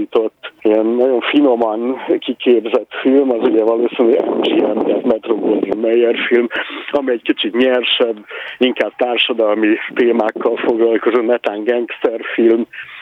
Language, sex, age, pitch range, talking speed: Hungarian, male, 50-69, 115-150 Hz, 110 wpm